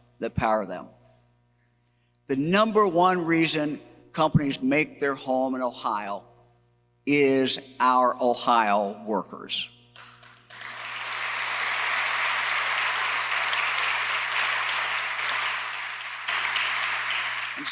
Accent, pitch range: American, 120-150 Hz